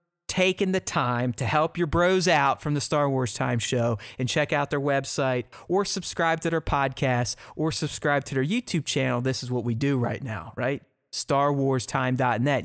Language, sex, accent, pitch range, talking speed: English, male, American, 130-165 Hz, 185 wpm